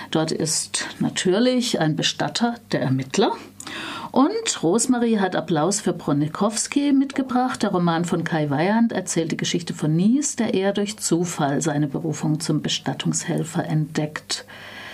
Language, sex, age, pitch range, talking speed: German, female, 50-69, 170-230 Hz, 135 wpm